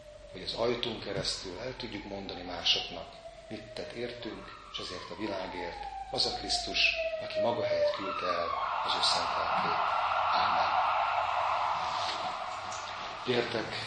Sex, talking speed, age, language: male, 115 wpm, 40-59, Hungarian